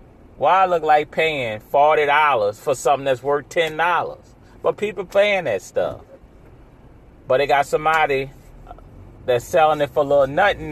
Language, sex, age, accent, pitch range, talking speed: English, male, 30-49, American, 125-165 Hz, 155 wpm